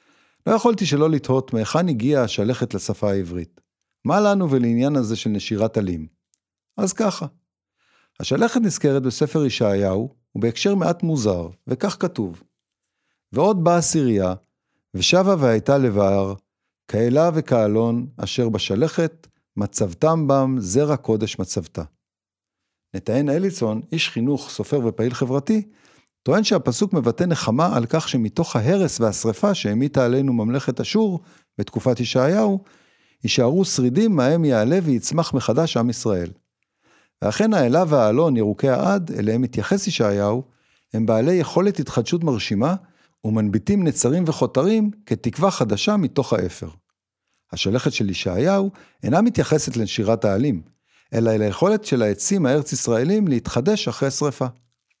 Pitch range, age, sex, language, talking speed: 110-165 Hz, 50-69, male, Hebrew, 120 wpm